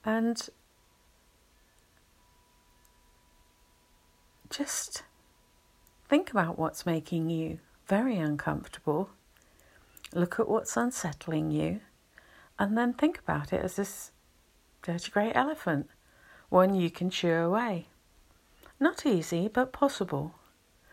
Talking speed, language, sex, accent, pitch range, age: 95 wpm, English, female, British, 150-205 Hz, 50-69